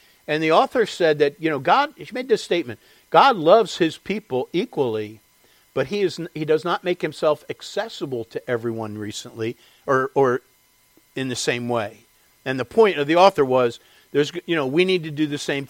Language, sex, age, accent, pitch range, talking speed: English, male, 50-69, American, 135-185 Hz, 195 wpm